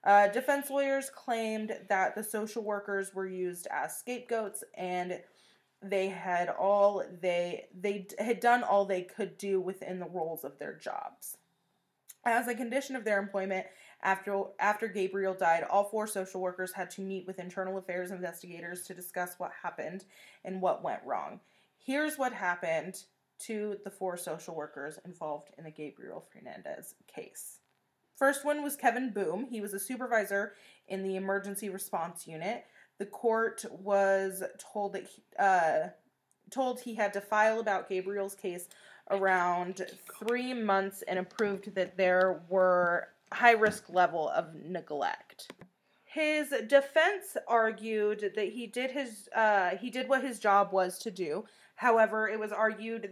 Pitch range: 185-220 Hz